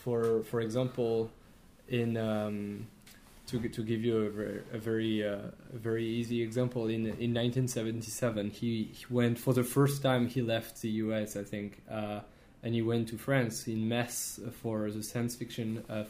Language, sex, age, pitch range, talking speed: English, male, 20-39, 110-120 Hz, 175 wpm